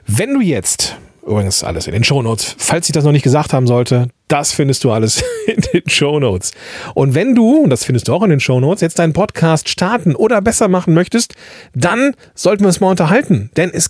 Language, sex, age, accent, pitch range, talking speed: German, male, 40-59, German, 130-185 Hz, 225 wpm